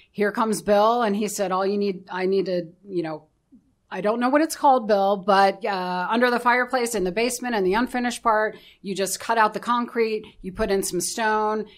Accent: American